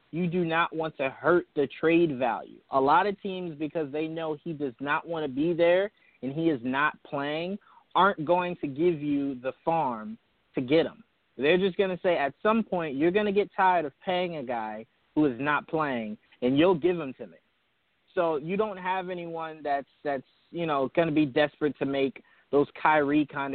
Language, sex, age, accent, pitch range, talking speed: English, male, 20-39, American, 135-170 Hz, 210 wpm